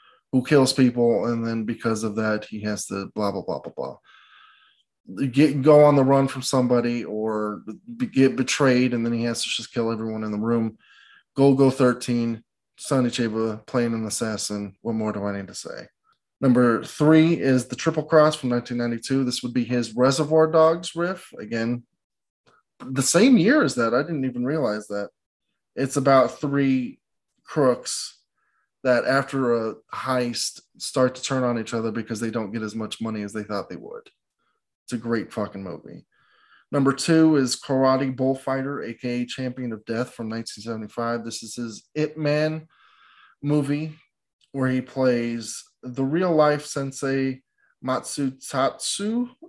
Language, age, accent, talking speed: English, 20-39, American, 165 wpm